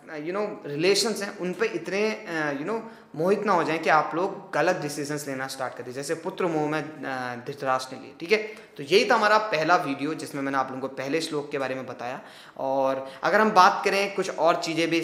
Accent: native